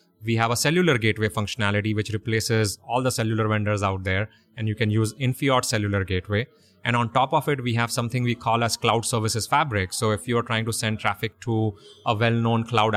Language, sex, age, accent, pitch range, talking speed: English, male, 30-49, Indian, 110-130 Hz, 215 wpm